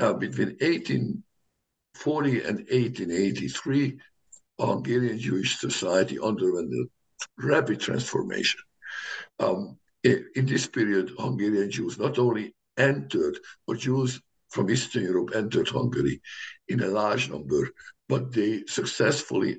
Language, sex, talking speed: English, male, 105 wpm